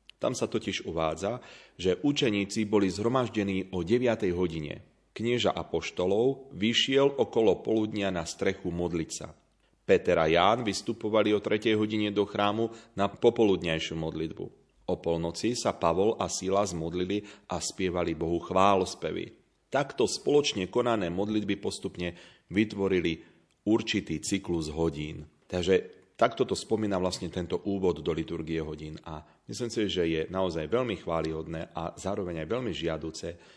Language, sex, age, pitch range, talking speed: Slovak, male, 40-59, 85-105 Hz, 135 wpm